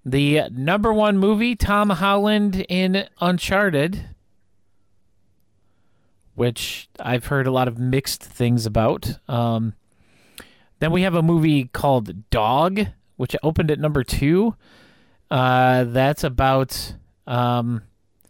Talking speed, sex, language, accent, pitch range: 110 wpm, male, English, American, 120-170 Hz